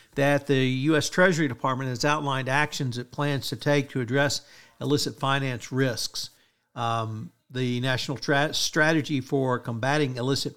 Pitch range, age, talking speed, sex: 120-145 Hz, 50-69, 140 wpm, male